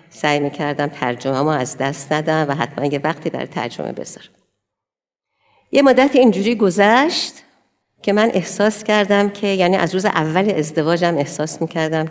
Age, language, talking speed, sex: 50-69, Persian, 145 wpm, female